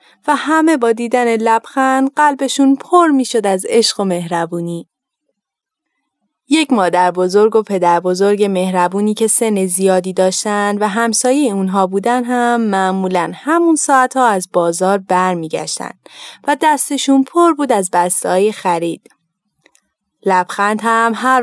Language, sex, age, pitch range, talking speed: Persian, female, 20-39, 190-250 Hz, 130 wpm